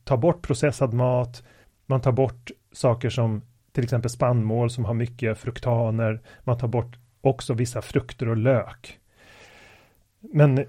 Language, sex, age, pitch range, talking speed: Swedish, male, 30-49, 115-135 Hz, 140 wpm